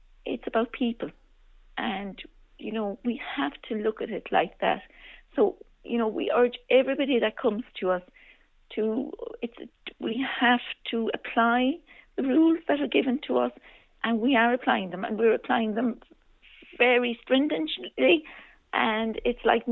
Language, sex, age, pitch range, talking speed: English, female, 50-69, 215-265 Hz, 155 wpm